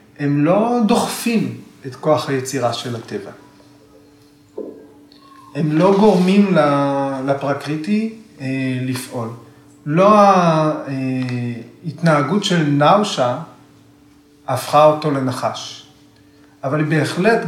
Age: 30-49